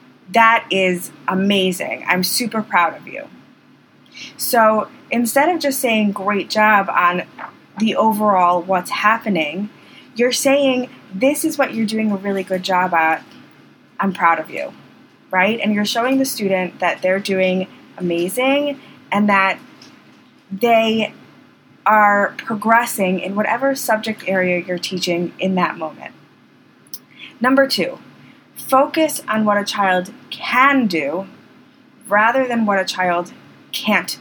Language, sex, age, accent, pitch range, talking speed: English, female, 20-39, American, 185-245 Hz, 130 wpm